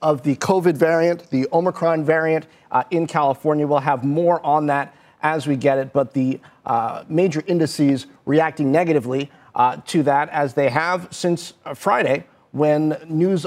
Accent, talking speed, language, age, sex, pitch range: American, 165 wpm, English, 40-59, male, 145-175 Hz